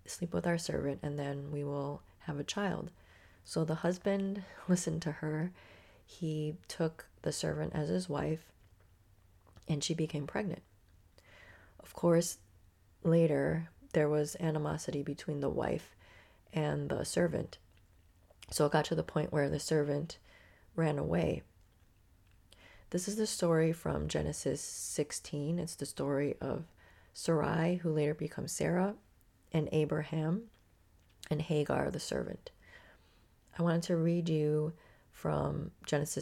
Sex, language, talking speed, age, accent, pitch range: female, English, 135 wpm, 30-49, American, 100-170 Hz